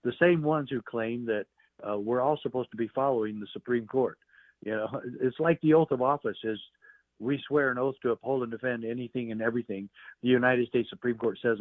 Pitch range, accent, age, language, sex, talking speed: 115-155 Hz, American, 60-79, English, male, 215 wpm